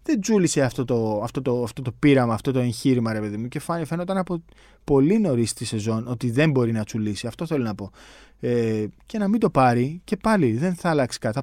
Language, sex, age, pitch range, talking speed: Greek, male, 20-39, 105-145 Hz, 230 wpm